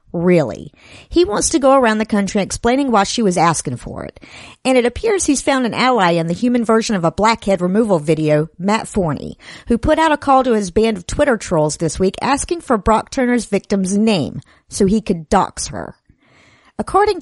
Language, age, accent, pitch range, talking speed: English, 50-69, American, 185-260 Hz, 200 wpm